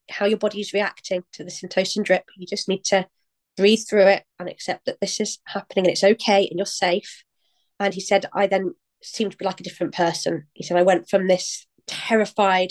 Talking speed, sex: 220 wpm, female